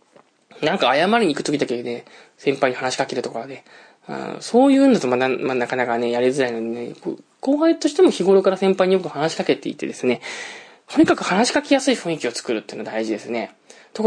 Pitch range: 120-195 Hz